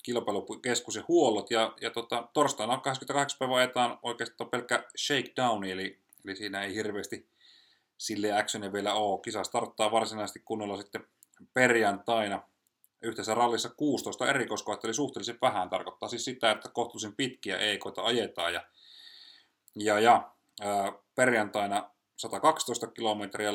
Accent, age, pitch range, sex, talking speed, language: native, 30-49, 100-125 Hz, male, 125 wpm, Finnish